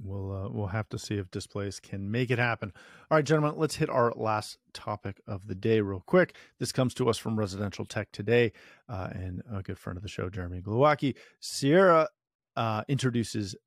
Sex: male